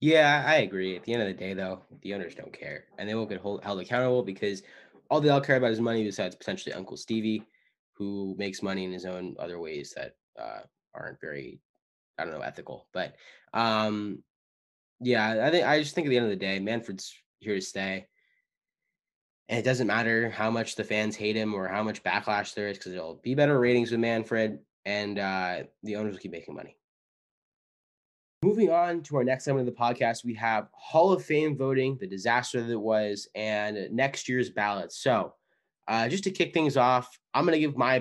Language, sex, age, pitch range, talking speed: English, male, 10-29, 105-130 Hz, 210 wpm